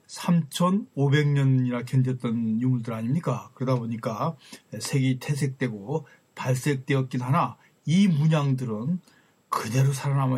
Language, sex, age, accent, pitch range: Korean, male, 40-59, native, 125-155 Hz